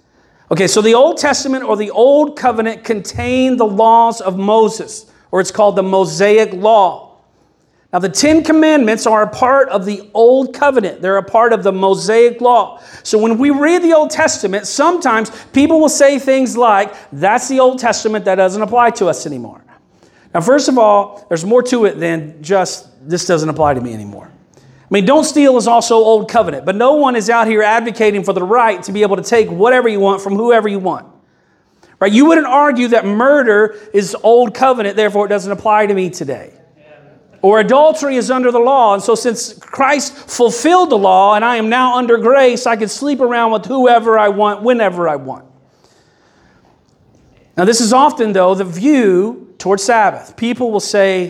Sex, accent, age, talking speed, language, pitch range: male, American, 40-59, 195 wpm, English, 195-250 Hz